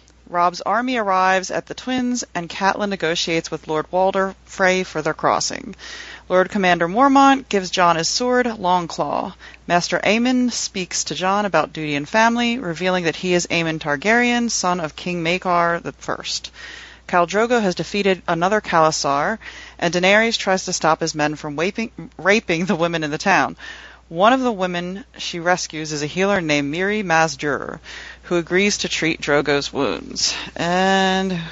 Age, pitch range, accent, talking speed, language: 30-49, 155-195 Hz, American, 160 wpm, English